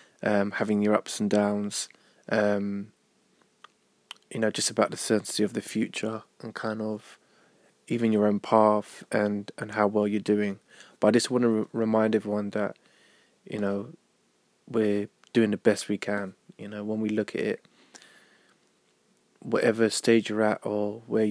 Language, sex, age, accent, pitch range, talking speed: English, male, 20-39, British, 105-110 Hz, 165 wpm